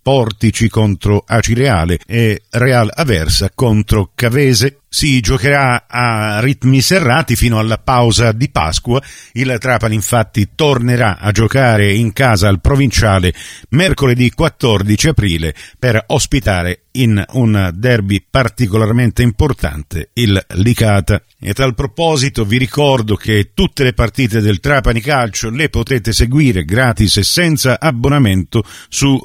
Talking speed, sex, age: 125 wpm, male, 50-69